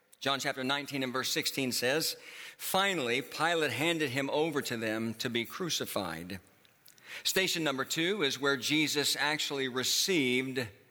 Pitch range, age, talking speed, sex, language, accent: 125-155 Hz, 50-69, 140 wpm, male, English, American